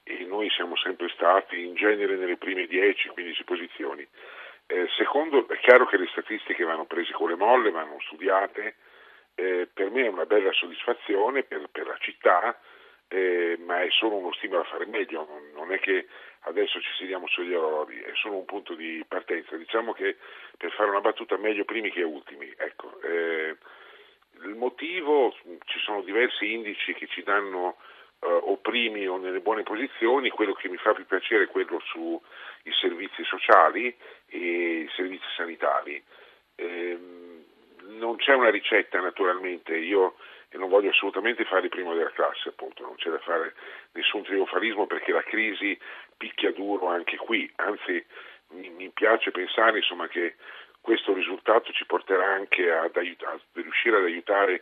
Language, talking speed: Italian, 165 wpm